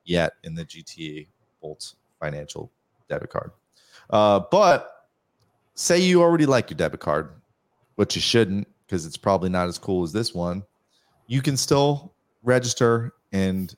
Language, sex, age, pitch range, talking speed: English, male, 30-49, 105-150 Hz, 150 wpm